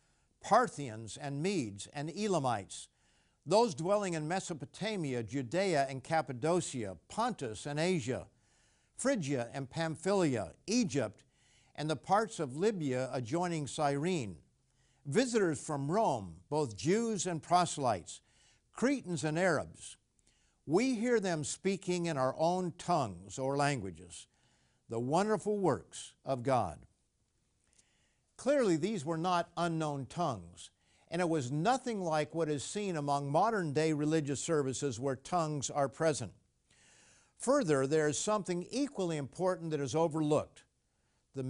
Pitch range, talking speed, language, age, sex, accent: 135-185 Hz, 120 wpm, English, 50-69, male, American